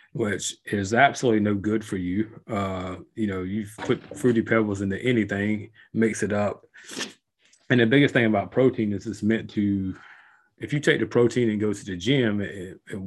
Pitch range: 100-115 Hz